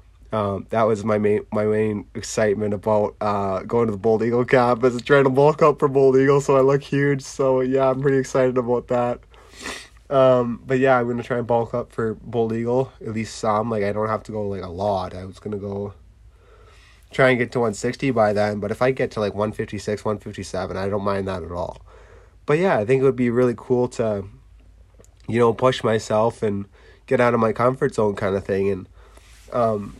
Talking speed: 220 wpm